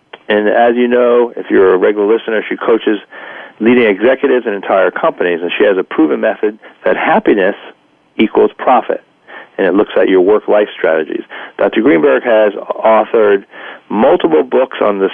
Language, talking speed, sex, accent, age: English, 165 wpm, male, American, 40-59